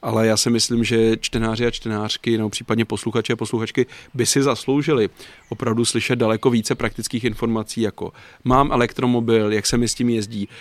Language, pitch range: Czech, 110-125 Hz